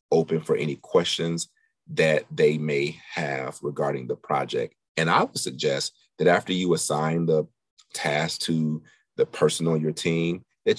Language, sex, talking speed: English, male, 155 wpm